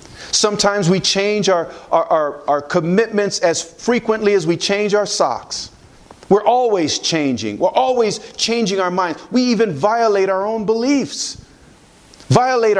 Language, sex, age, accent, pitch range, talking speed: English, male, 40-59, American, 185-255 Hz, 140 wpm